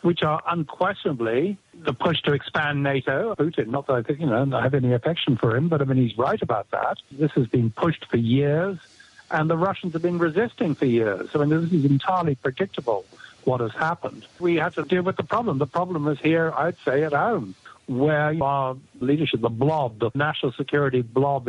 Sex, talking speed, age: male, 205 wpm, 60-79